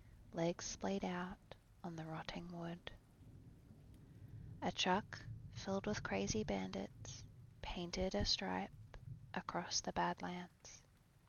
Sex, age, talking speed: female, 20-39, 100 wpm